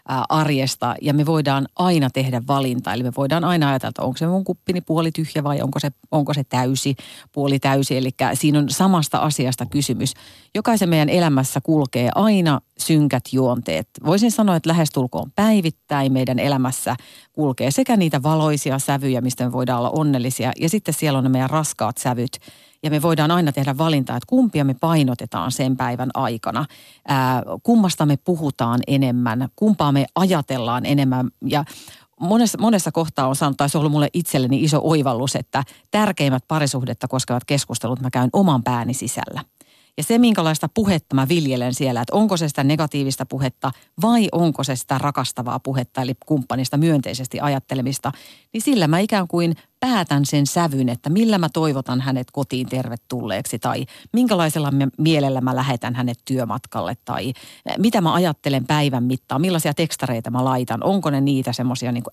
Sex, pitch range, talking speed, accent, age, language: female, 130-160 Hz, 165 wpm, native, 40-59, Finnish